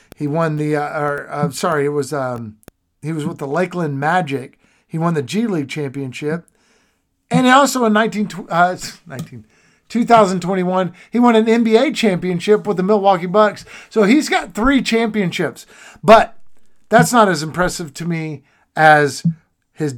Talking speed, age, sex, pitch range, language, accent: 160 wpm, 50-69, male, 145-190 Hz, English, American